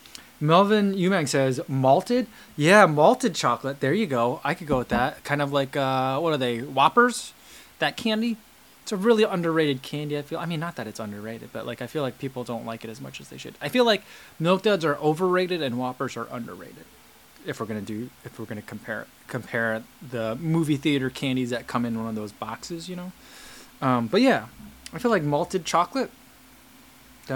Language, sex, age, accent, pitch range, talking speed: English, male, 20-39, American, 125-170 Hz, 205 wpm